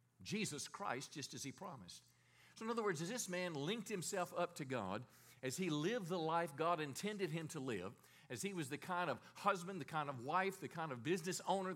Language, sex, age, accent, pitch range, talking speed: English, male, 50-69, American, 140-185 Hz, 225 wpm